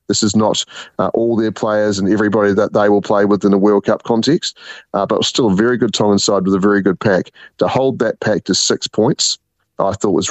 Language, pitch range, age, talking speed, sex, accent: English, 100-115 Hz, 30-49, 245 wpm, male, Australian